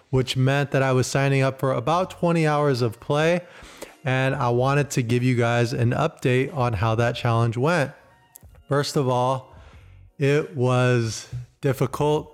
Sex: male